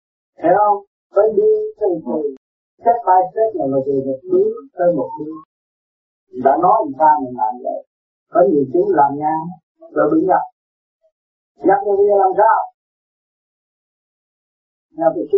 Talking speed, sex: 130 wpm, male